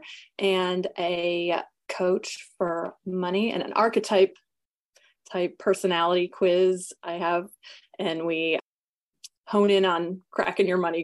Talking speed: 115 wpm